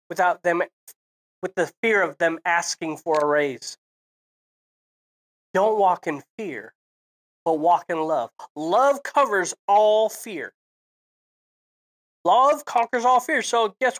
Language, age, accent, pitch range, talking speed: English, 20-39, American, 170-225 Hz, 125 wpm